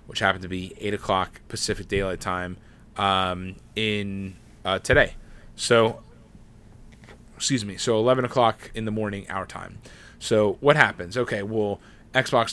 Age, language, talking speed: 30-49, English, 145 wpm